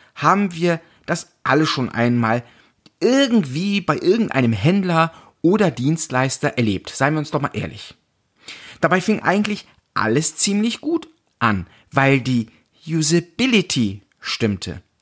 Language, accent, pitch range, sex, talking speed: German, German, 125-195 Hz, male, 120 wpm